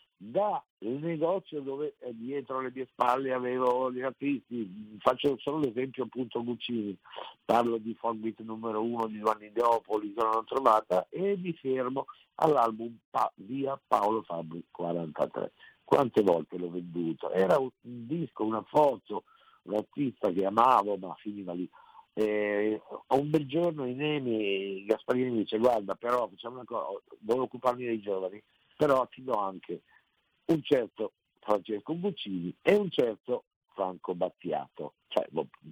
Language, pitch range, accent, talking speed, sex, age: Italian, 110-145 Hz, native, 140 wpm, male, 50-69